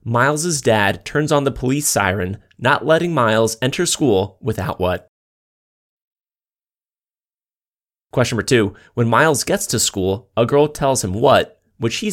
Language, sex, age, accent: English, male, 20-39, American